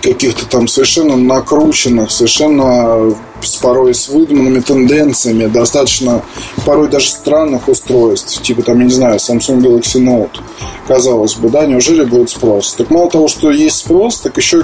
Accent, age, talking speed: native, 20-39, 155 wpm